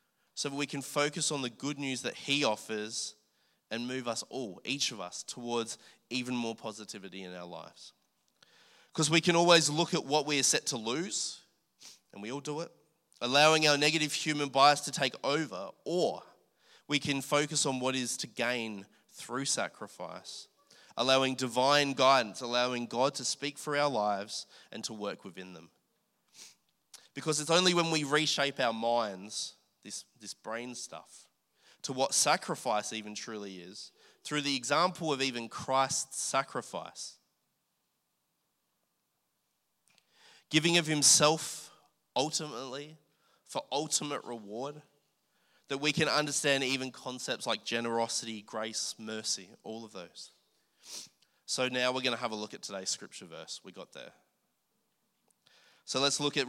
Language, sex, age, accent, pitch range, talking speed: English, male, 20-39, Australian, 115-145 Hz, 150 wpm